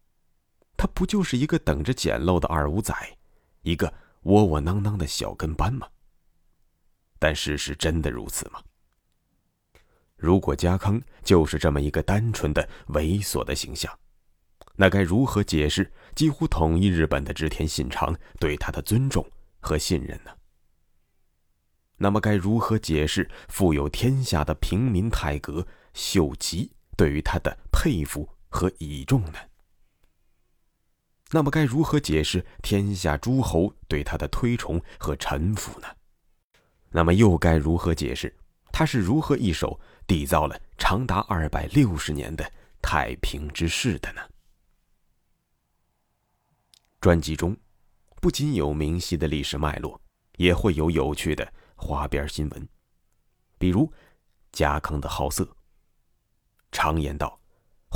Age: 30-49